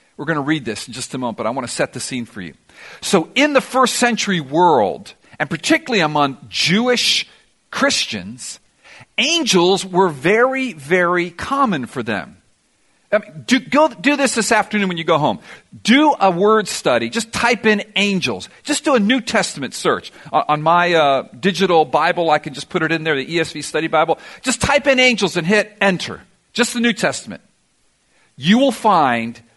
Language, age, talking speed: English, 50-69, 185 wpm